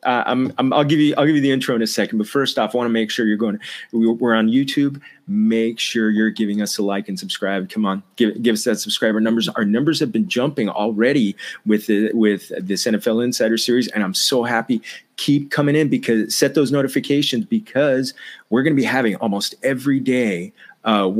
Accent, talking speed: American, 225 wpm